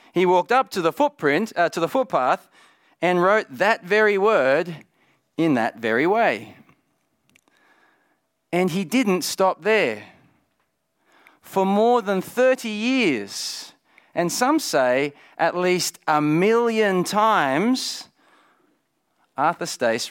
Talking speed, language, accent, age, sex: 115 wpm, English, Australian, 40-59, male